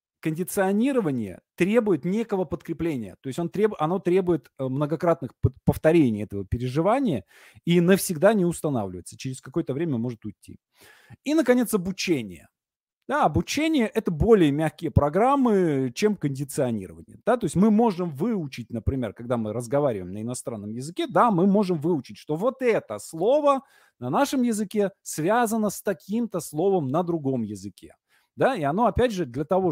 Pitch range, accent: 125-195 Hz, native